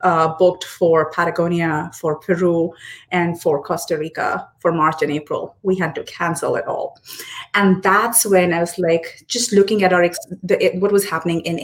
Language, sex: English, female